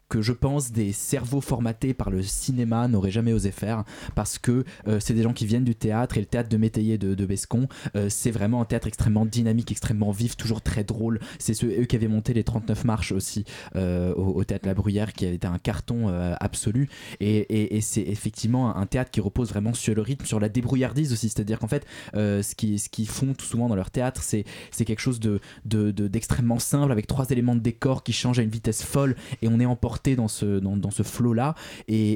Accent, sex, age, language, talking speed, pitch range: French, male, 20-39, French, 240 wpm, 105-125 Hz